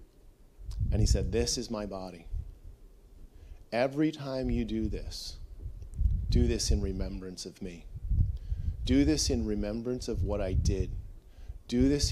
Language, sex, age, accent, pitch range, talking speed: English, male, 40-59, American, 85-110 Hz, 140 wpm